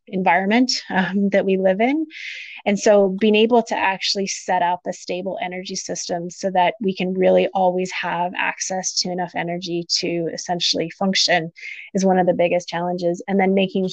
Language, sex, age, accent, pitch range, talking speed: English, female, 20-39, American, 180-200 Hz, 175 wpm